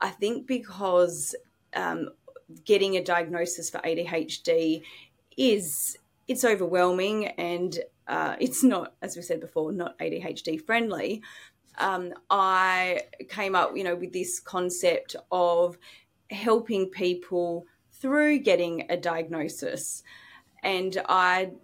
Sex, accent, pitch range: female, Australian, 170-210 Hz